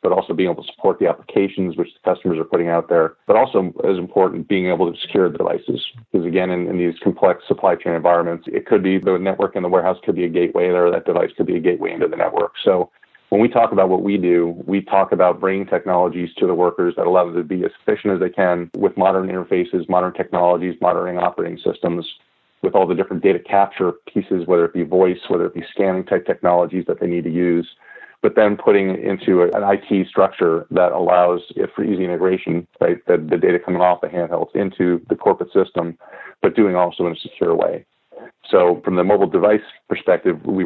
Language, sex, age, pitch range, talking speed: English, male, 30-49, 90-100 Hz, 220 wpm